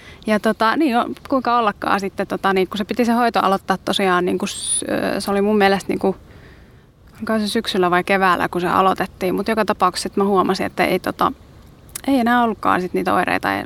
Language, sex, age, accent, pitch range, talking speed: Finnish, female, 20-39, native, 185-210 Hz, 200 wpm